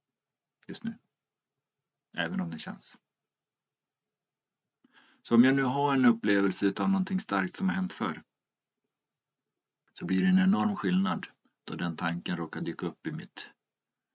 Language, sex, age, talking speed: Swedish, male, 50-69, 145 wpm